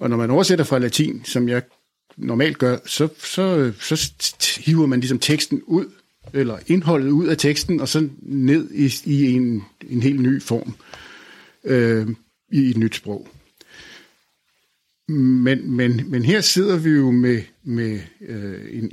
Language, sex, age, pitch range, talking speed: Danish, male, 60-79, 115-150 Hz, 145 wpm